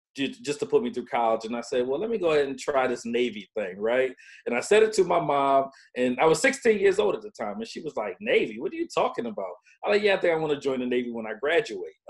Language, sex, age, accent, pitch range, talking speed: English, male, 40-59, American, 120-160 Hz, 300 wpm